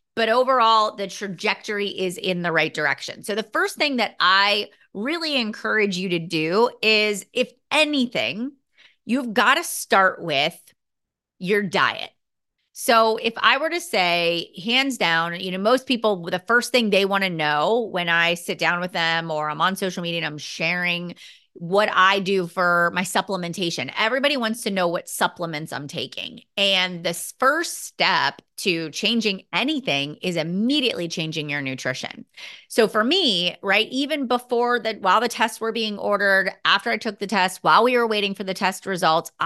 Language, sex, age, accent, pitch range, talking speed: English, female, 30-49, American, 175-235 Hz, 175 wpm